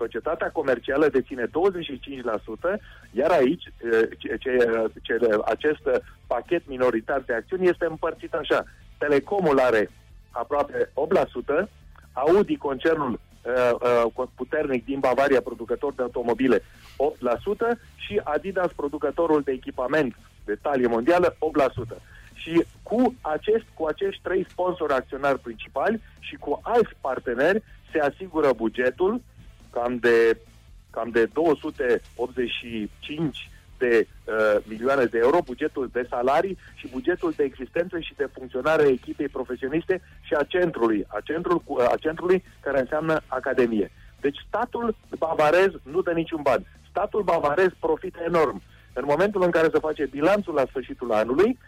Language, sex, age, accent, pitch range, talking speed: Romanian, male, 40-59, native, 125-170 Hz, 130 wpm